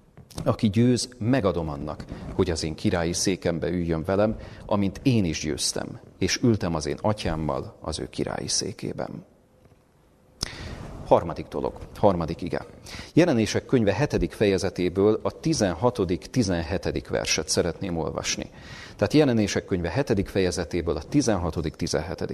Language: Hungarian